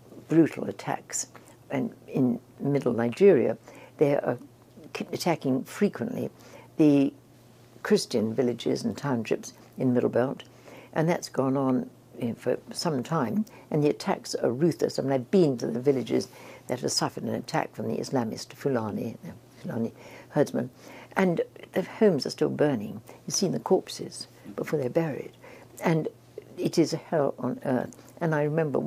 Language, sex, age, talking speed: English, female, 60-79, 155 wpm